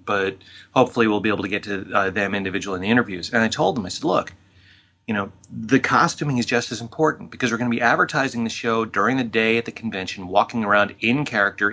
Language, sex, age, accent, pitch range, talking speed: English, male, 30-49, American, 100-120 Hz, 240 wpm